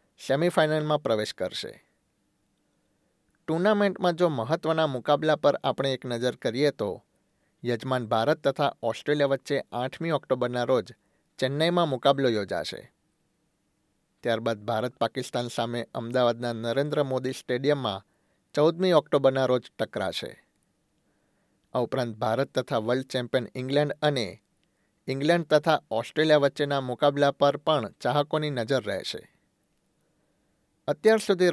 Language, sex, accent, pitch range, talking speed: Gujarati, male, native, 120-150 Hz, 110 wpm